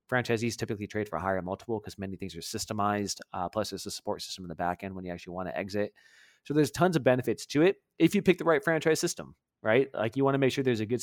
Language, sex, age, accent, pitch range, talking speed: English, male, 30-49, American, 100-130 Hz, 275 wpm